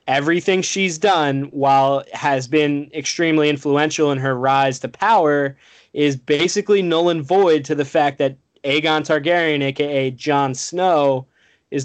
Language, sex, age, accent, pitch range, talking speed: English, male, 20-39, American, 130-150 Hz, 140 wpm